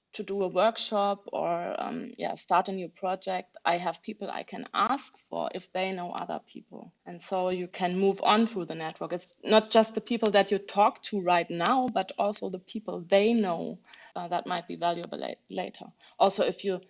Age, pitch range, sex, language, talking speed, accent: 30-49, 180-215 Hz, female, English, 210 wpm, German